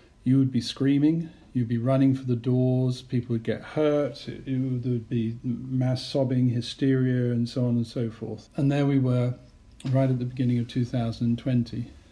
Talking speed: 180 wpm